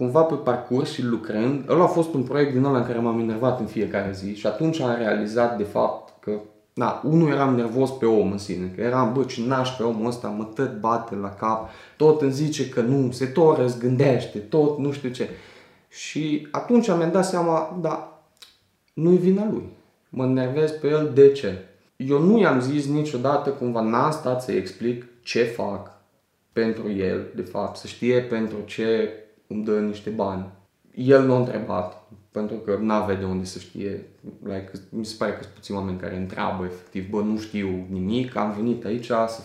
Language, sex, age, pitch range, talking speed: Romanian, male, 20-39, 105-150 Hz, 195 wpm